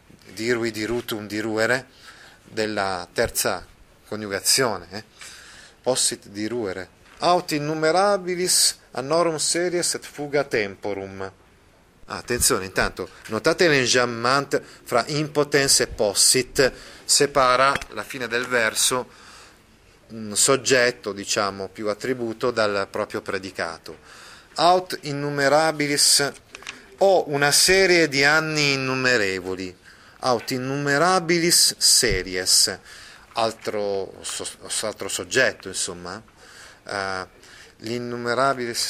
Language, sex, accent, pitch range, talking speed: Italian, male, native, 105-145 Hz, 90 wpm